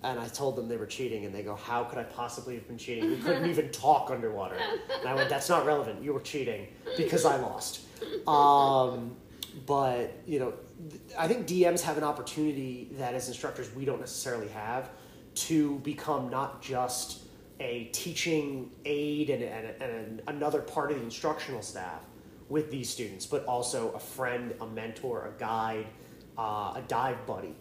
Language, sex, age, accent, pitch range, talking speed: English, male, 30-49, American, 120-155 Hz, 180 wpm